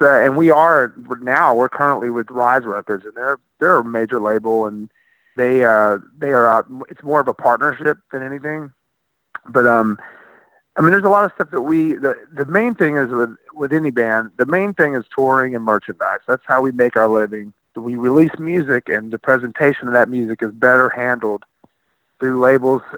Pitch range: 120-145 Hz